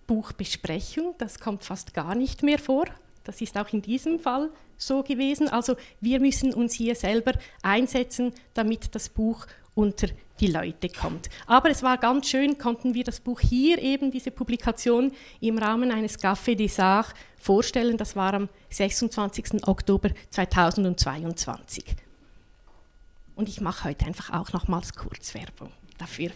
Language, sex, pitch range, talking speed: English, female, 220-290 Hz, 150 wpm